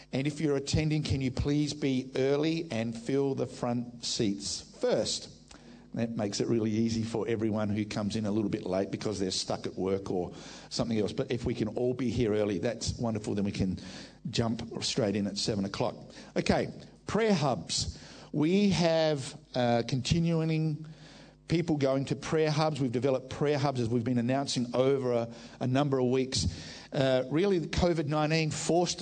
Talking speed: 180 wpm